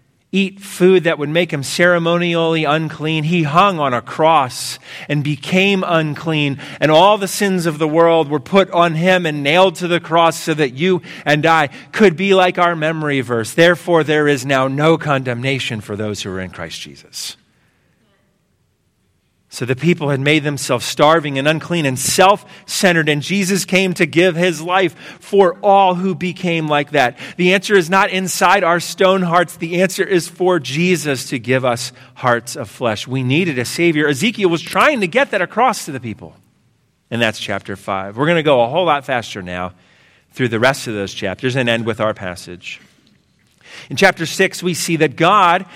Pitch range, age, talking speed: 135-180 Hz, 40-59, 190 wpm